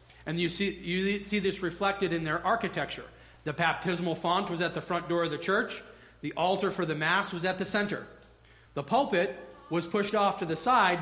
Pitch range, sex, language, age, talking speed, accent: 165-205 Hz, male, English, 40-59, 205 wpm, American